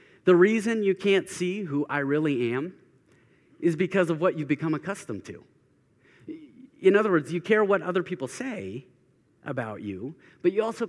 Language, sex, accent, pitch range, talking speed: English, male, American, 130-180 Hz, 170 wpm